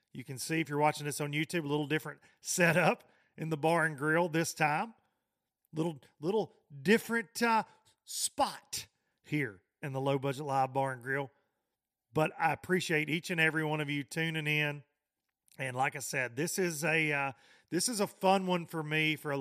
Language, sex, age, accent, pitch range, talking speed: English, male, 40-59, American, 140-160 Hz, 190 wpm